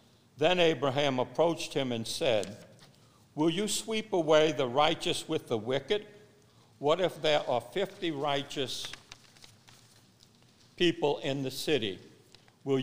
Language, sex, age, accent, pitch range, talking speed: English, male, 60-79, American, 125-160 Hz, 120 wpm